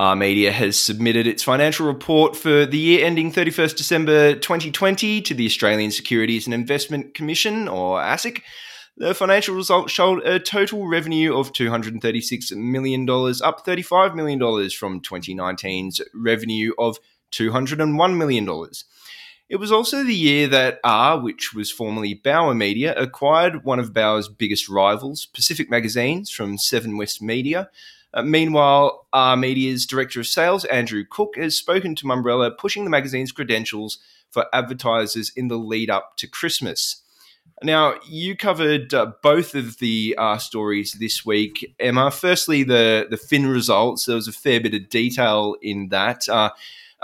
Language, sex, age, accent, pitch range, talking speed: English, male, 20-39, Australian, 110-160 Hz, 150 wpm